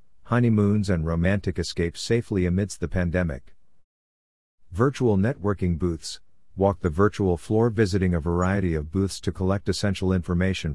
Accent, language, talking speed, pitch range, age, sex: American, English, 135 wpm, 85-105 Hz, 50-69, male